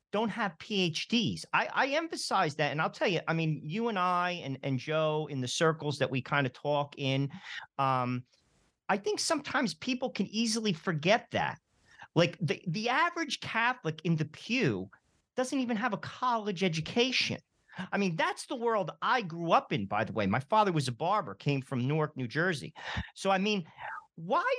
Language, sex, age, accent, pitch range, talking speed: English, male, 40-59, American, 150-230 Hz, 190 wpm